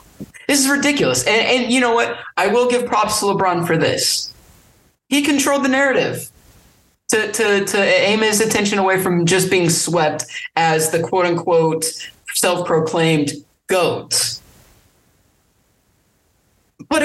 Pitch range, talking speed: 165-230 Hz, 130 wpm